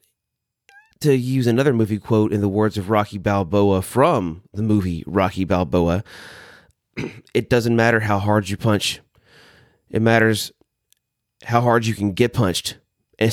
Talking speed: 145 wpm